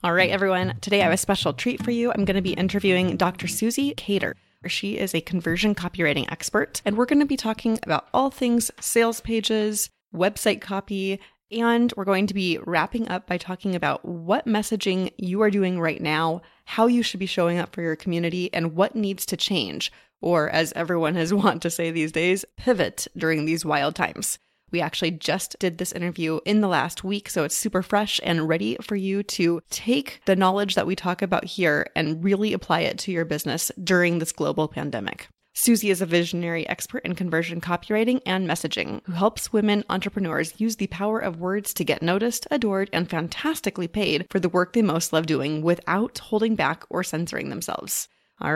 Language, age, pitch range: English, 30-49, 170-210 Hz